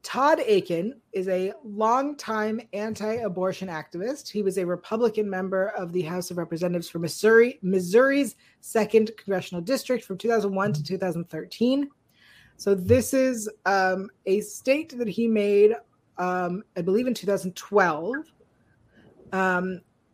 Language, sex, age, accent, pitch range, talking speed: English, female, 30-49, American, 185-225 Hz, 120 wpm